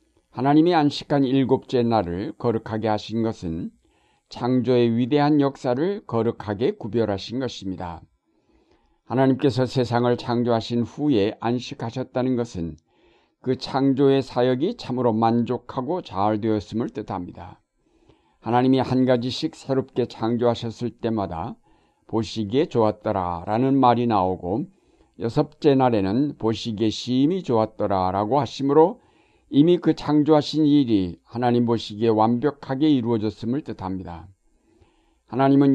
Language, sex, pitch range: Korean, male, 110-135 Hz